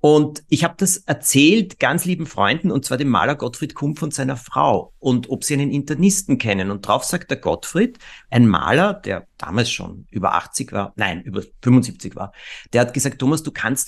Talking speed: 200 wpm